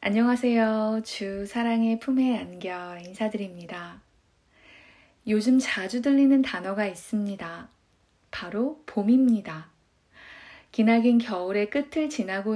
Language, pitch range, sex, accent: Korean, 195-255 Hz, female, native